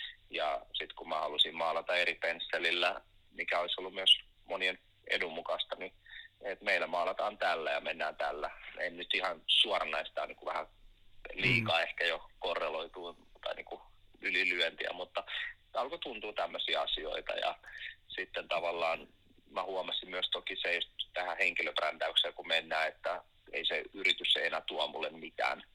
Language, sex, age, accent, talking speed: Finnish, male, 30-49, native, 150 wpm